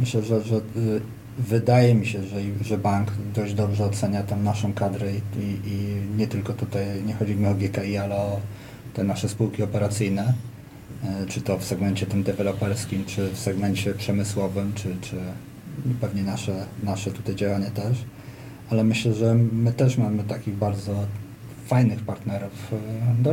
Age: 40-59